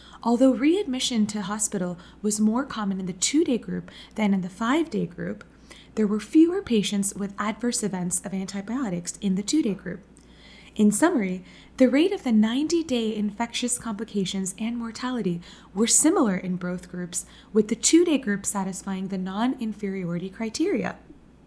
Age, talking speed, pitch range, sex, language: 20-39, 150 wpm, 195-260 Hz, female, English